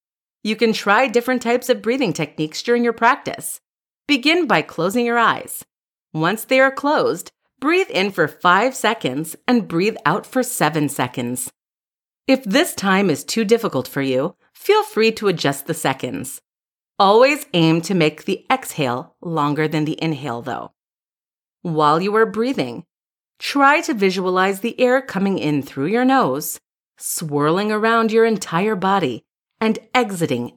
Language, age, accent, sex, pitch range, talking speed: English, 30-49, American, female, 160-240 Hz, 150 wpm